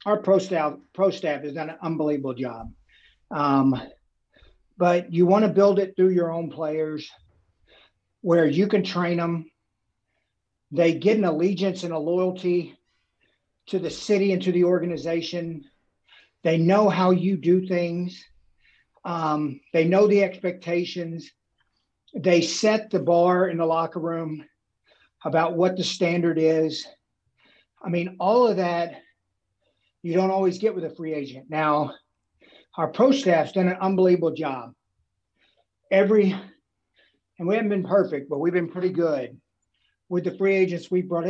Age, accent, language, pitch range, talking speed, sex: 50-69, American, English, 160-190 Hz, 150 wpm, male